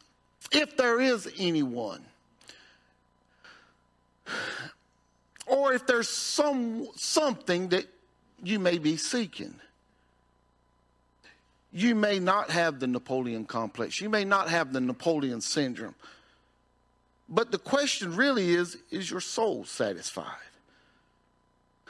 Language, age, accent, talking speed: English, 50-69, American, 100 wpm